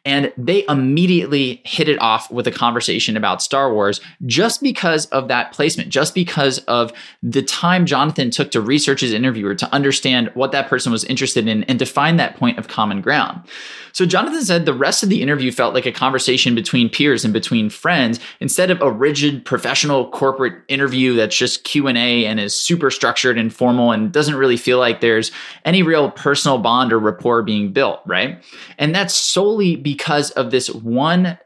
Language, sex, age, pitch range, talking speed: English, male, 20-39, 120-160 Hz, 190 wpm